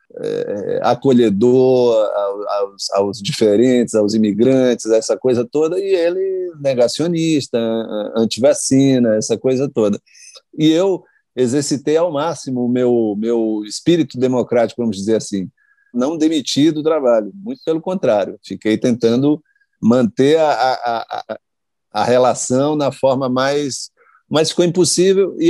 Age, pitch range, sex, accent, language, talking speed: 50-69, 115-160 Hz, male, Brazilian, Portuguese, 120 wpm